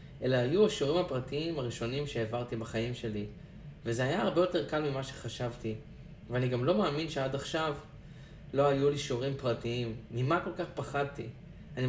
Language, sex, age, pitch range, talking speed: Hebrew, male, 20-39, 120-150 Hz, 155 wpm